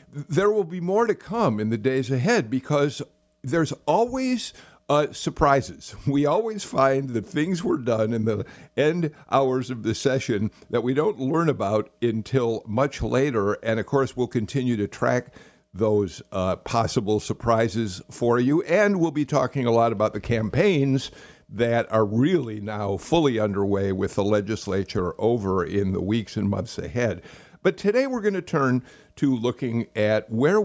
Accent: American